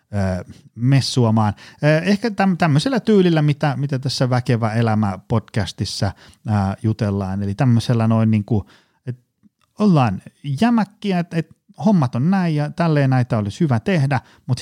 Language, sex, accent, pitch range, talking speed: Finnish, male, native, 100-135 Hz, 125 wpm